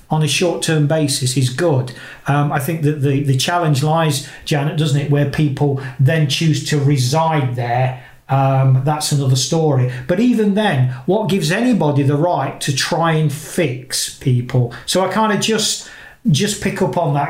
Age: 40-59